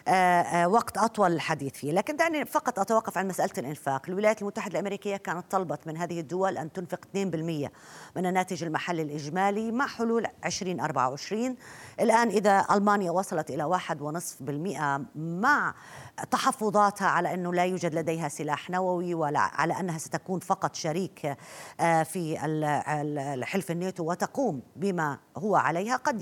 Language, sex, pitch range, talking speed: Arabic, female, 155-200 Hz, 135 wpm